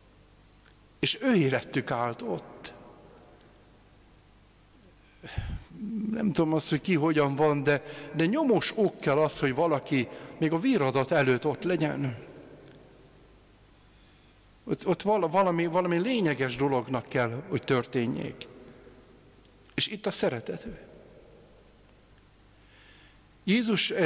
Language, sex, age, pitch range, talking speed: Hungarian, male, 60-79, 130-165 Hz, 100 wpm